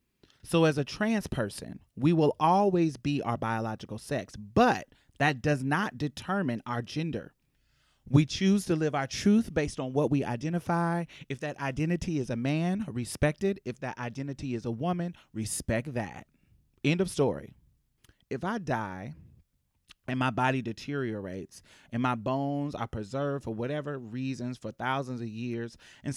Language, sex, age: English, male, 30-49